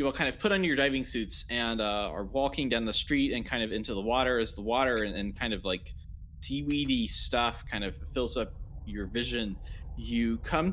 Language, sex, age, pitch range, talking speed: English, male, 20-39, 80-115 Hz, 220 wpm